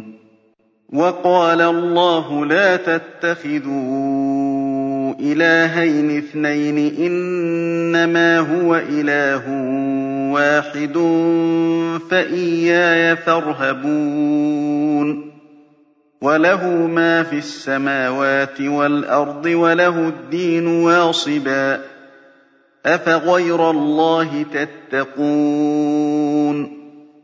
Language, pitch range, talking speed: Arabic, 135-165 Hz, 50 wpm